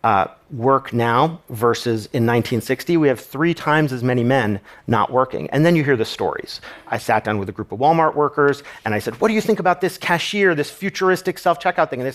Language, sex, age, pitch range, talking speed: Arabic, male, 40-59, 115-140 Hz, 225 wpm